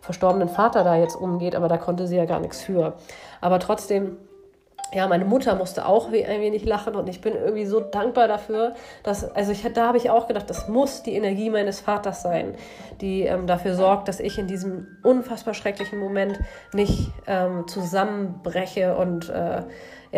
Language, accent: German, German